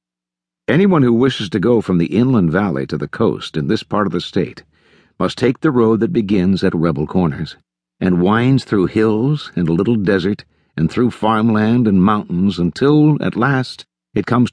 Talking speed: 185 wpm